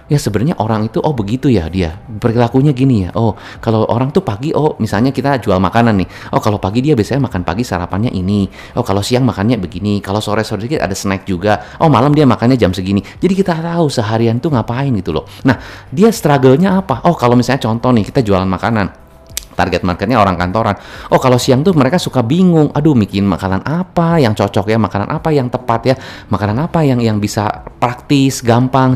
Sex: male